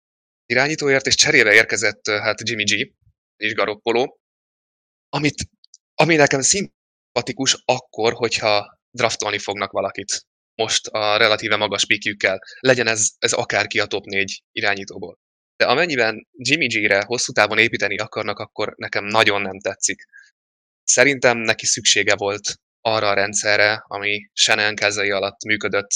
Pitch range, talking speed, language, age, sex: 105-115 Hz, 130 wpm, Hungarian, 20-39, male